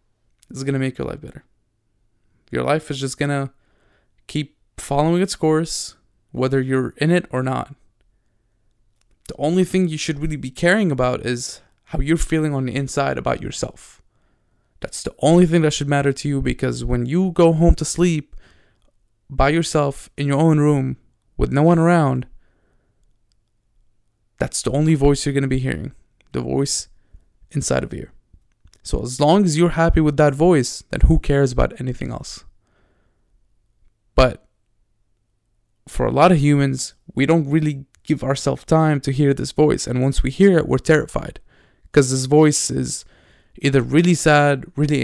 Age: 20-39